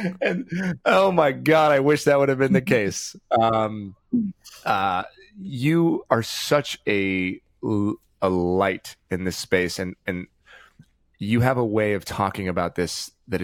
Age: 30-49